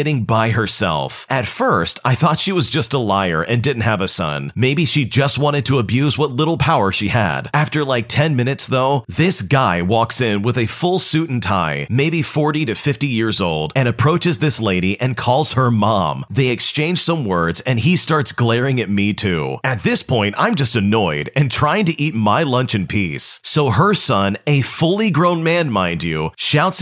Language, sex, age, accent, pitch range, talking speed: English, male, 40-59, American, 110-150 Hz, 205 wpm